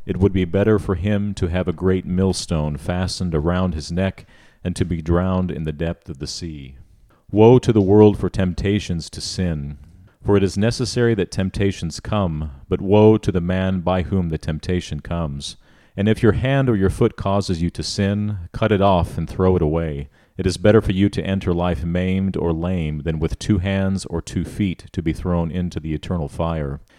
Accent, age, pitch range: American, 40-59, 85-105 Hz